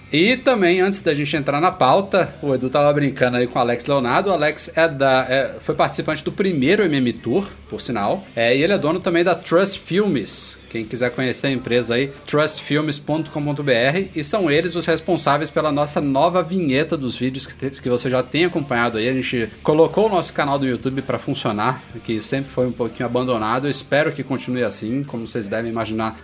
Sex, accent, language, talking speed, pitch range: male, Brazilian, Portuguese, 205 wpm, 115-145 Hz